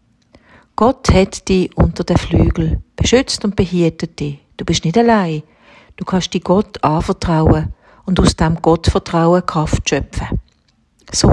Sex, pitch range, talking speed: female, 155-195 Hz, 140 wpm